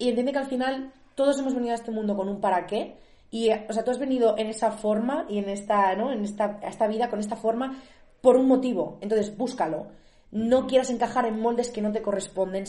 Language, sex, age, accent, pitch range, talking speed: Spanish, female, 20-39, Spanish, 190-230 Hz, 230 wpm